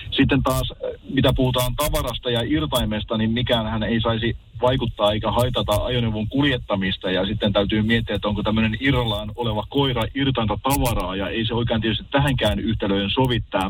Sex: male